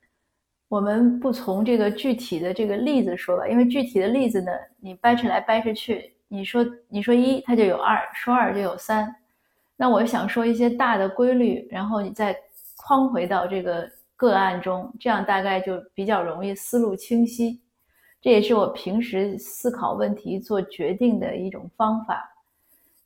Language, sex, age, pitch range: Chinese, female, 30-49, 185-235 Hz